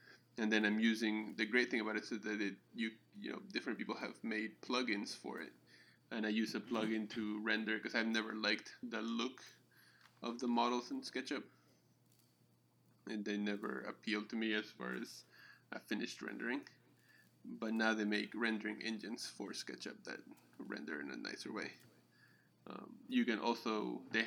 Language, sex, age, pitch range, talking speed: English, male, 20-39, 110-120 Hz, 175 wpm